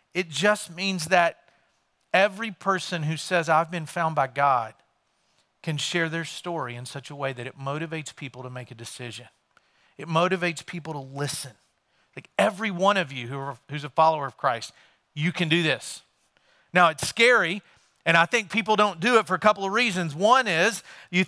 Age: 40-59